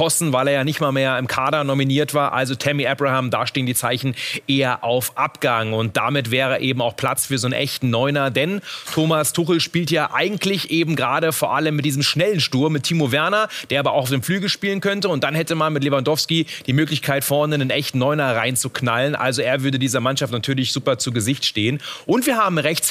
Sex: male